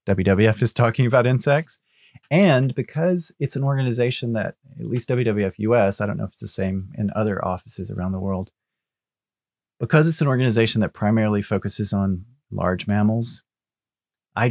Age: 30-49